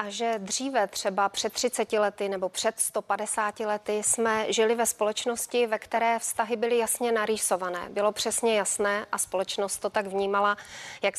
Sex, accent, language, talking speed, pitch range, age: female, native, Czech, 160 wpm, 205-235 Hz, 30-49